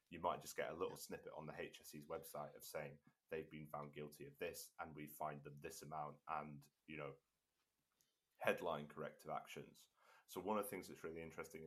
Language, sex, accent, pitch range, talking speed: English, male, British, 75-80 Hz, 200 wpm